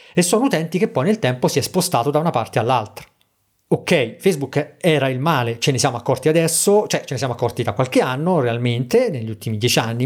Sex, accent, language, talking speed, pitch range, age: male, native, Italian, 220 wpm, 120-155 Hz, 40-59